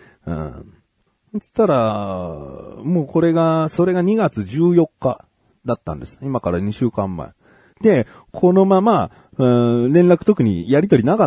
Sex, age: male, 40-59